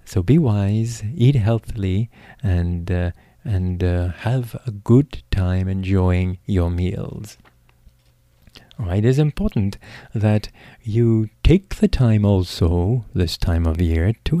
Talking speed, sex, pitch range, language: 130 wpm, male, 90-120 Hz, English